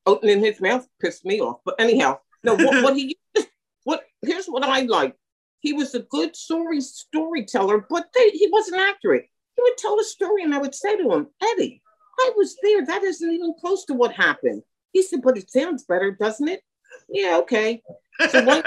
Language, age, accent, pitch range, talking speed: English, 50-69, American, 220-340 Hz, 190 wpm